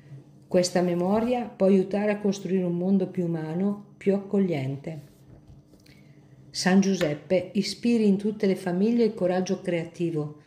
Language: Italian